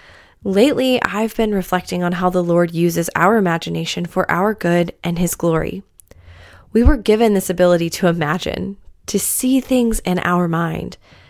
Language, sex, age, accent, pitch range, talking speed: English, female, 20-39, American, 180-225 Hz, 160 wpm